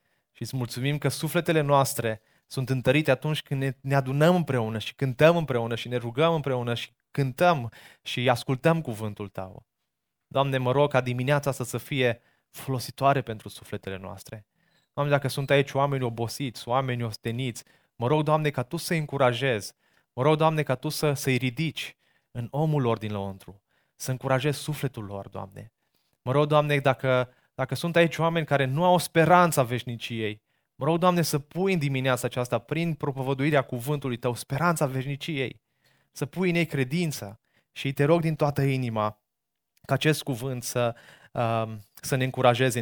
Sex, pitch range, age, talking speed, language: male, 115-145 Hz, 20-39, 165 wpm, Romanian